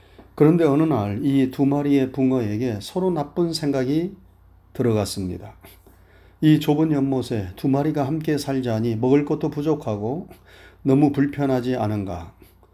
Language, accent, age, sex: Korean, native, 30-49, male